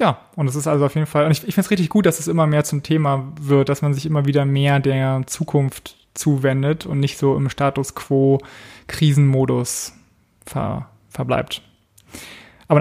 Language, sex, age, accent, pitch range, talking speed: German, male, 20-39, German, 135-155 Hz, 175 wpm